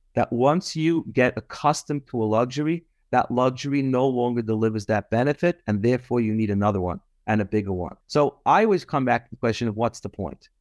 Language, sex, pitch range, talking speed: English, male, 105-140 Hz, 210 wpm